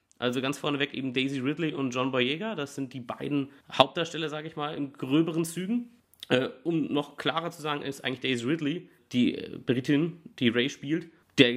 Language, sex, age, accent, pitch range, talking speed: German, male, 30-49, German, 125-160 Hz, 185 wpm